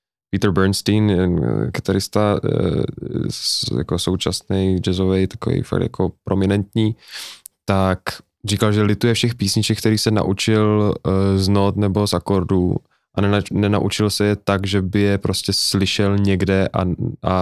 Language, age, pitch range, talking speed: Czech, 10-29, 95-105 Hz, 125 wpm